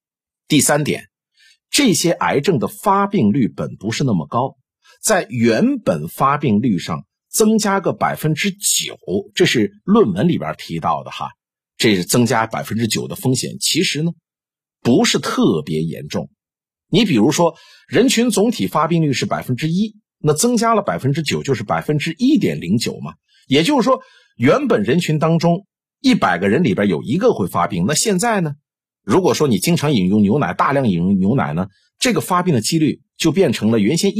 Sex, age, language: male, 50-69, Chinese